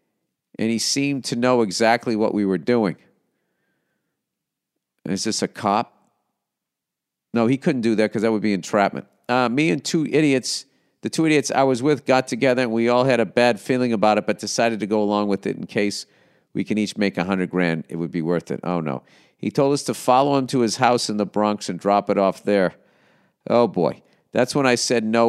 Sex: male